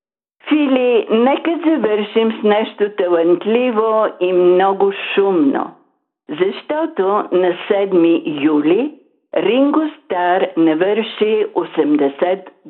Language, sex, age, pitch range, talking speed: Bulgarian, female, 50-69, 175-255 Hz, 80 wpm